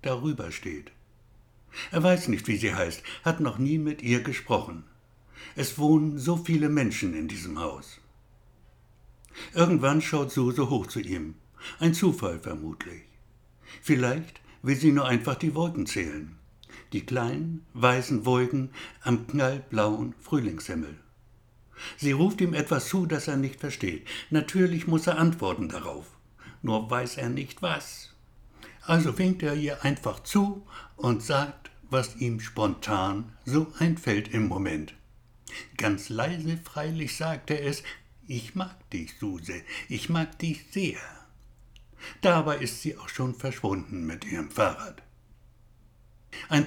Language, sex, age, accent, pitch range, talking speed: German, male, 60-79, German, 115-160 Hz, 135 wpm